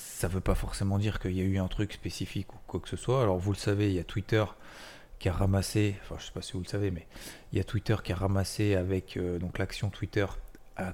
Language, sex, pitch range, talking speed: French, male, 95-110 Hz, 275 wpm